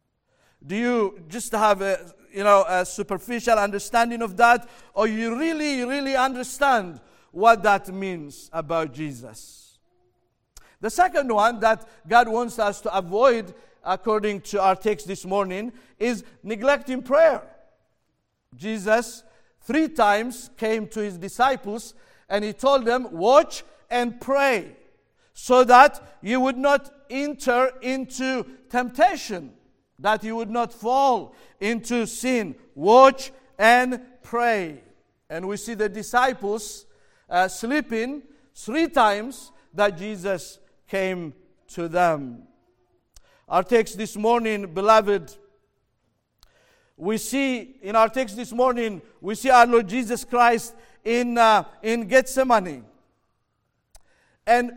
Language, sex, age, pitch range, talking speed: English, male, 50-69, 200-255 Hz, 120 wpm